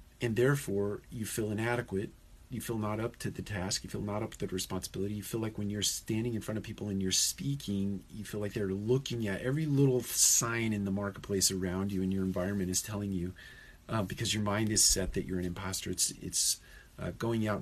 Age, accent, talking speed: 40-59, American, 230 wpm